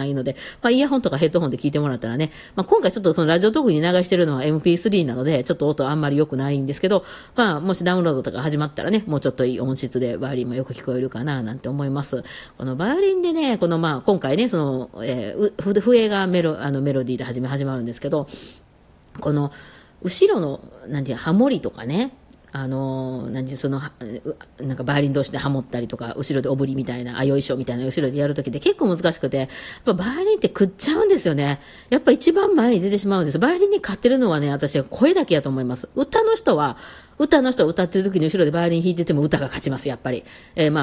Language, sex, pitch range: Japanese, female, 140-215 Hz